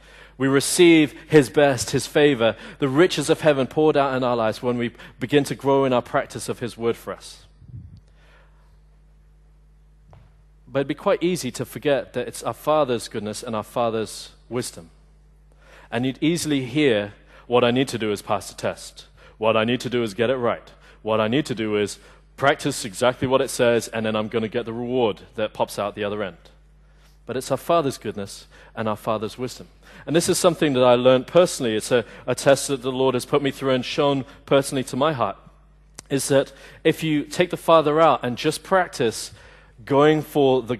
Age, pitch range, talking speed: 40-59, 115-150 Hz, 205 wpm